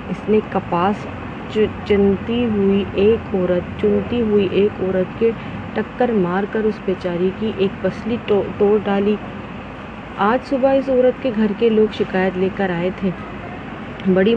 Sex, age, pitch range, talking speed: female, 30-49, 190-220 Hz, 155 wpm